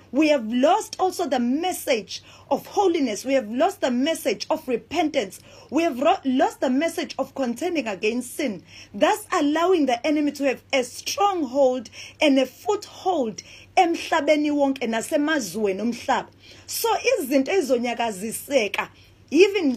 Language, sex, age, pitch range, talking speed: English, female, 30-49, 250-335 Hz, 115 wpm